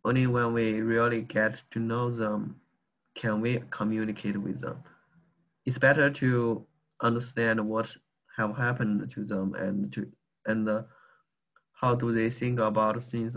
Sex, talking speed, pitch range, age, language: male, 145 wpm, 110-120 Hz, 20-39, English